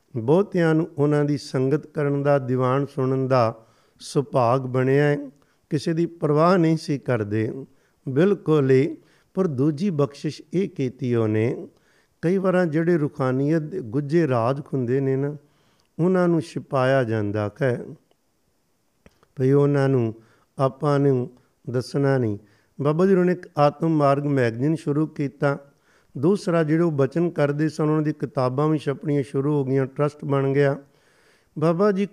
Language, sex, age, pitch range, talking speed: Punjabi, male, 50-69, 130-160 Hz, 120 wpm